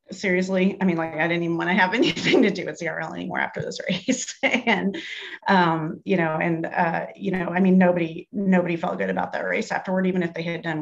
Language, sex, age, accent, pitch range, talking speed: English, female, 30-49, American, 175-200 Hz, 235 wpm